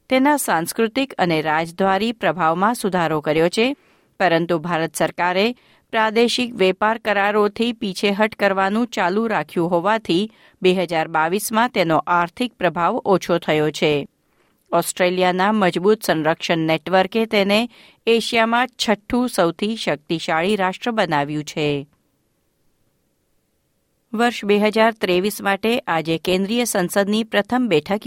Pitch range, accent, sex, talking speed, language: 170-220 Hz, native, female, 90 wpm, Gujarati